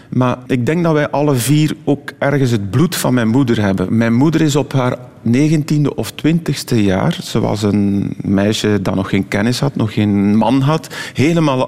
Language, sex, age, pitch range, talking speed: Dutch, male, 40-59, 110-140 Hz, 195 wpm